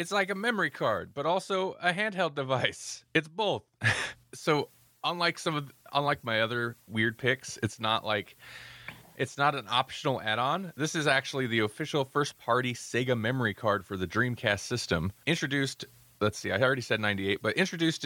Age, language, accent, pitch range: 30-49, English, American, 115-150 Hz